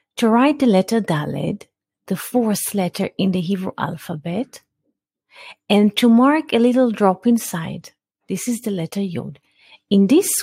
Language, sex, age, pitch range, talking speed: English, female, 40-59, 165-240 Hz, 150 wpm